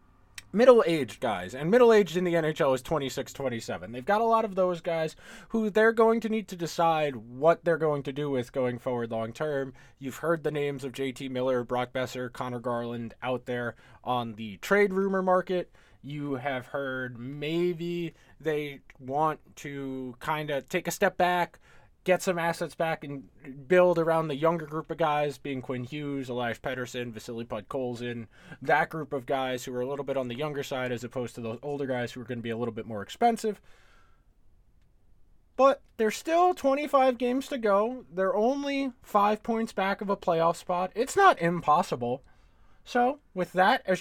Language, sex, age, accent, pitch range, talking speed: English, male, 20-39, American, 130-185 Hz, 185 wpm